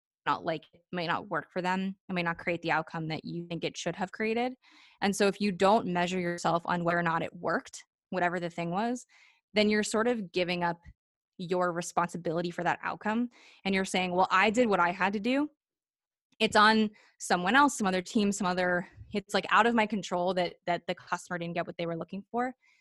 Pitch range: 175-205 Hz